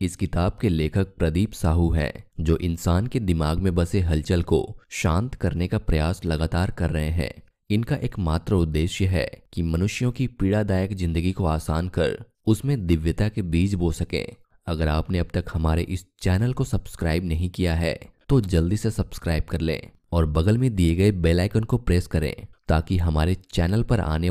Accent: native